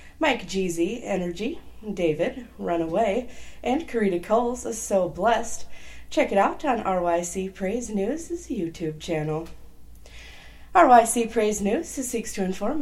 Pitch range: 170-240 Hz